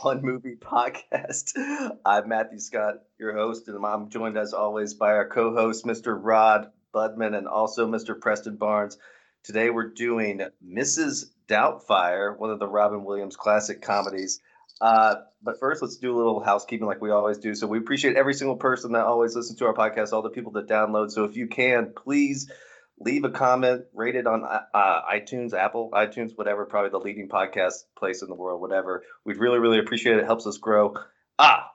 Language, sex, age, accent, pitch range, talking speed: English, male, 30-49, American, 105-120 Hz, 190 wpm